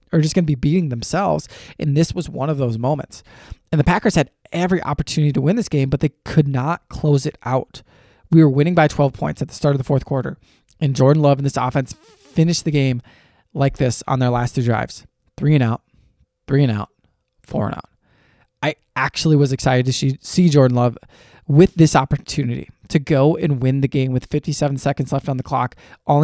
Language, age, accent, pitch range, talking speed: English, 20-39, American, 130-155 Hz, 215 wpm